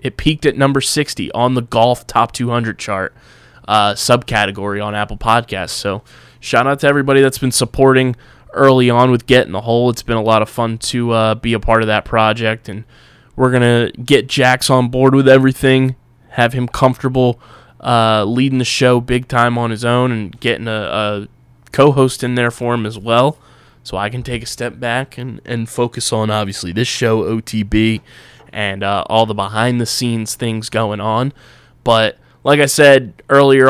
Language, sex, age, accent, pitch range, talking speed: English, male, 20-39, American, 110-125 Hz, 185 wpm